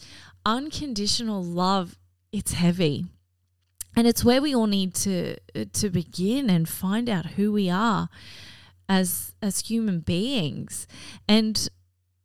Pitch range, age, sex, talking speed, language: 165-220 Hz, 20-39, female, 120 wpm, English